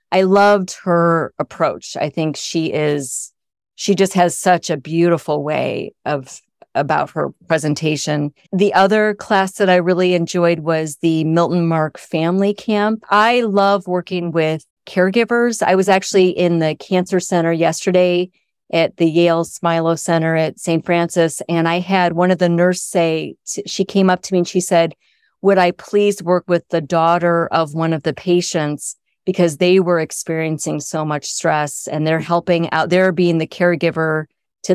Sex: female